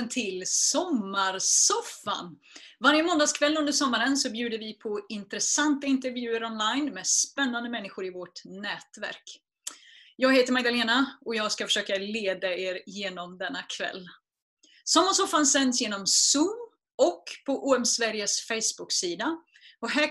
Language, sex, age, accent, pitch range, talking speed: Swedish, female, 30-49, native, 210-300 Hz, 120 wpm